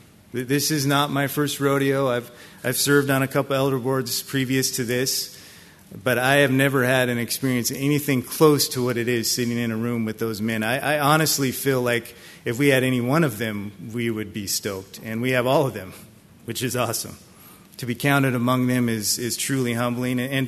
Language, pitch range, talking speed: English, 120-140 Hz, 210 wpm